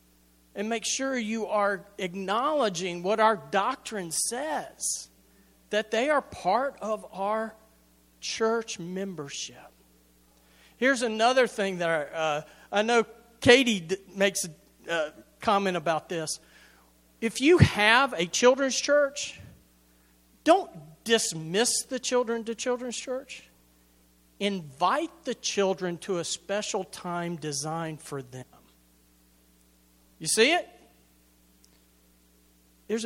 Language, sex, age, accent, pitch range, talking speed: English, male, 40-59, American, 145-230 Hz, 105 wpm